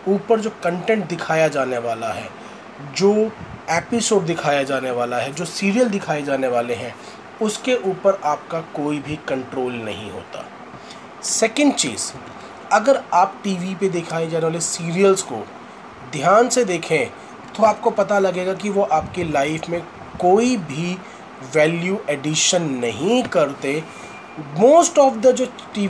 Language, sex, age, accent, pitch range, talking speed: Hindi, male, 30-49, native, 155-215 Hz, 140 wpm